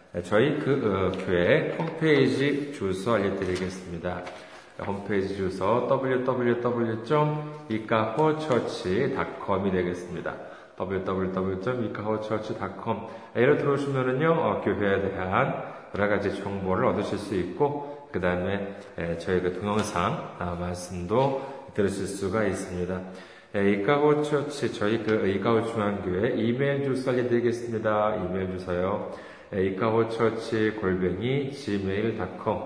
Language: Korean